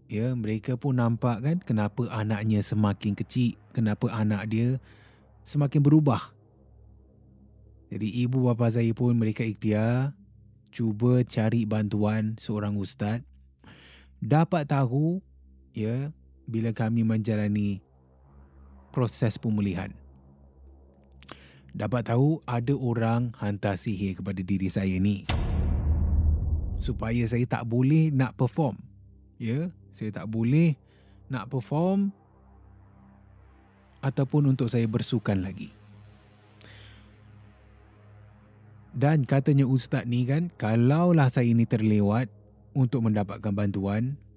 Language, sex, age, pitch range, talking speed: Malay, male, 20-39, 100-125 Hz, 100 wpm